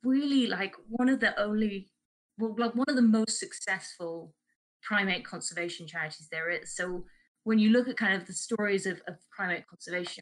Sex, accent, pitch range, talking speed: female, British, 175-210 Hz, 175 wpm